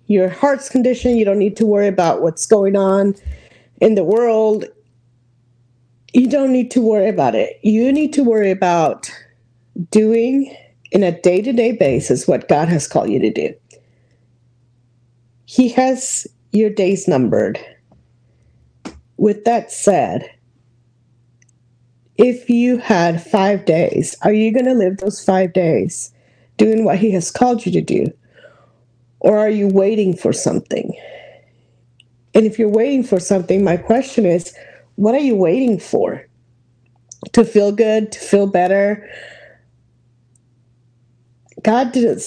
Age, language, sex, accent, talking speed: 40-59, English, female, American, 135 wpm